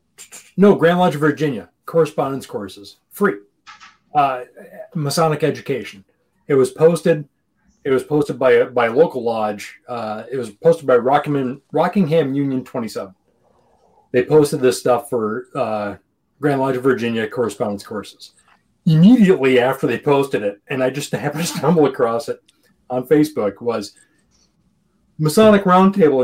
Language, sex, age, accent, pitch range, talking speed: English, male, 30-49, American, 130-165 Hz, 140 wpm